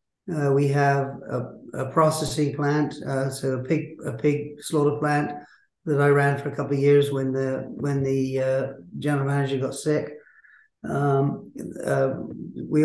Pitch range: 135-150 Hz